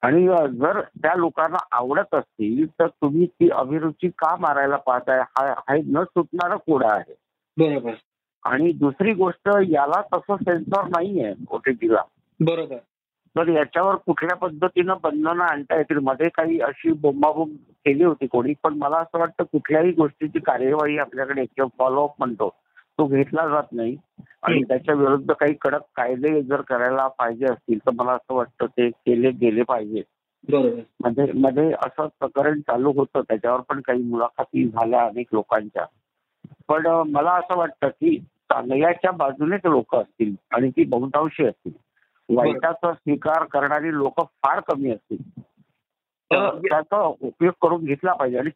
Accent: native